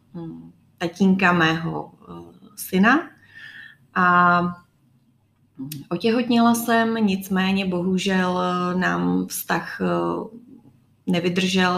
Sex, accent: female, native